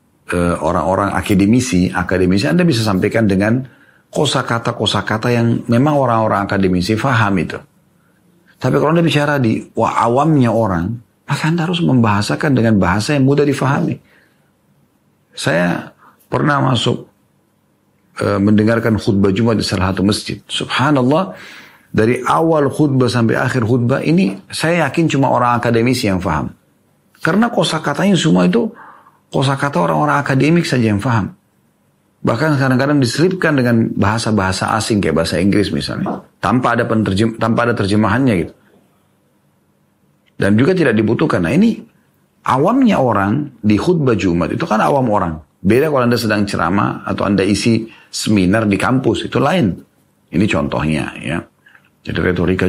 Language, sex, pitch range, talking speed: Indonesian, male, 100-140 Hz, 135 wpm